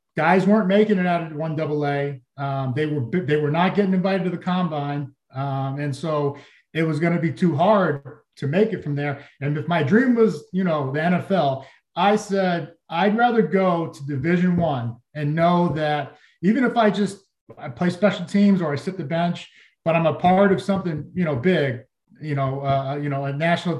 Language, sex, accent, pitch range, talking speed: English, male, American, 145-180 Hz, 205 wpm